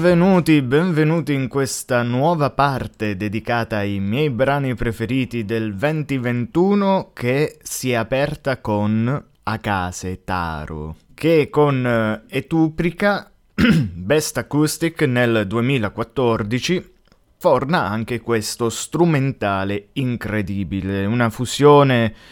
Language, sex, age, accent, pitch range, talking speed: Italian, male, 20-39, native, 105-135 Hz, 90 wpm